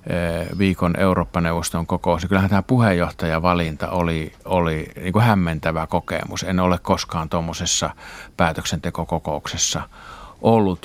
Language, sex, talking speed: Finnish, male, 100 wpm